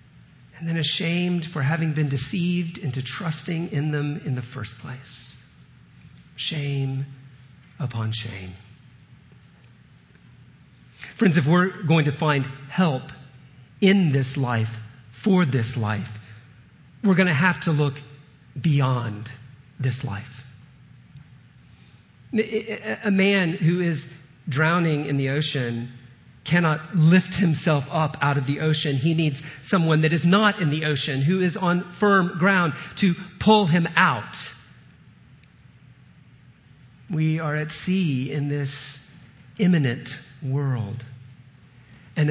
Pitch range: 130-170 Hz